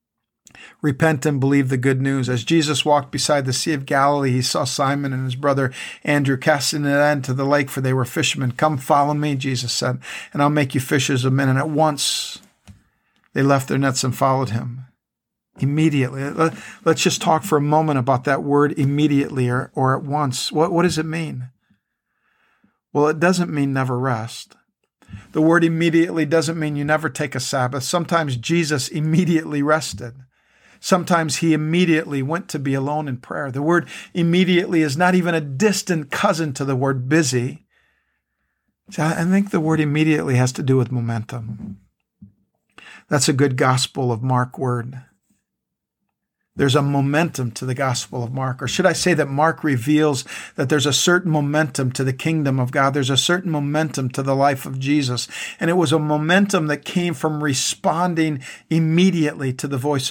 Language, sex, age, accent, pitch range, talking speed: English, male, 50-69, American, 135-160 Hz, 180 wpm